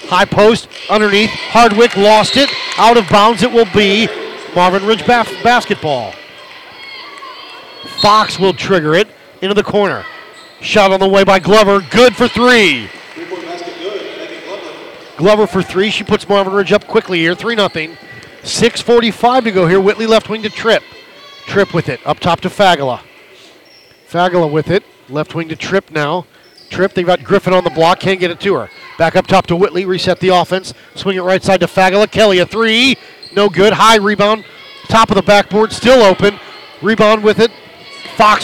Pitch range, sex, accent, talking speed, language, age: 180-220 Hz, male, American, 175 wpm, English, 40-59